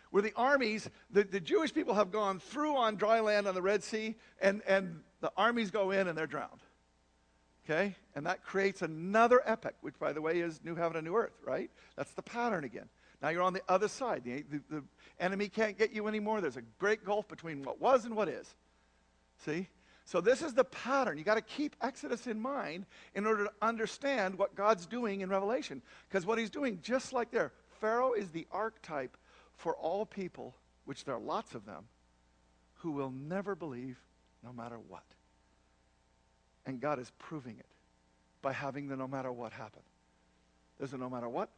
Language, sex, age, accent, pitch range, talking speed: English, male, 50-69, American, 130-215 Hz, 200 wpm